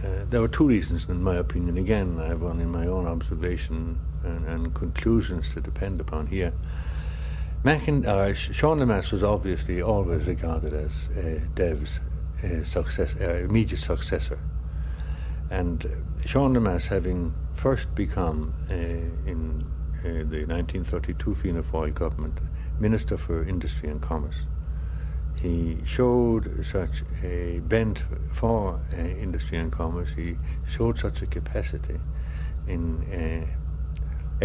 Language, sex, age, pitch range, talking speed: English, male, 60-79, 75-90 Hz, 135 wpm